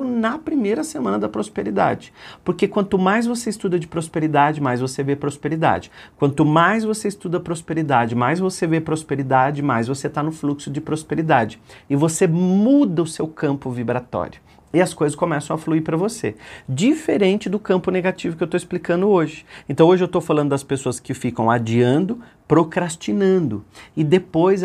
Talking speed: 170 wpm